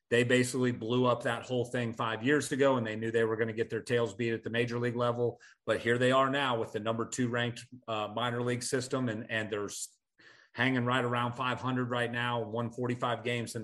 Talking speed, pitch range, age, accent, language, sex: 230 wpm, 115-125 Hz, 40-59, American, English, male